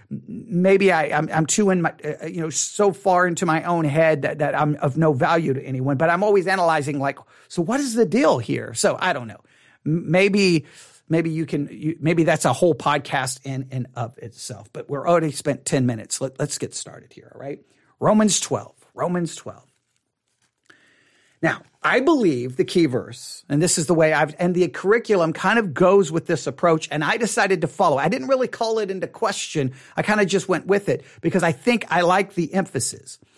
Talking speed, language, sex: 205 wpm, English, male